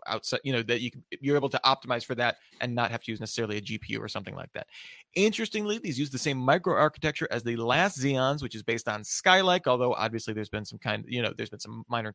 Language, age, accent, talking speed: English, 30-49, American, 255 wpm